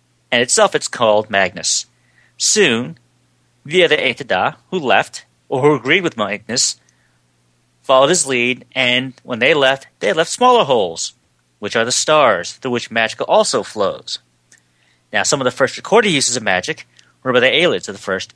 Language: English